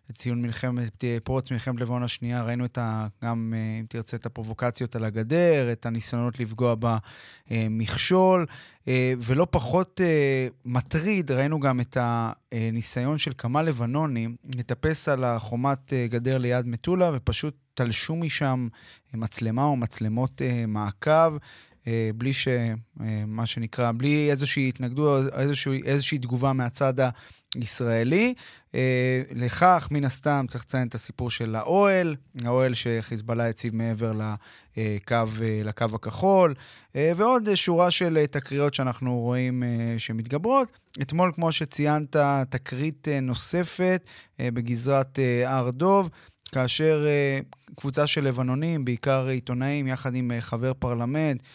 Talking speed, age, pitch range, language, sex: 115 wpm, 20-39, 120-145 Hz, Hebrew, male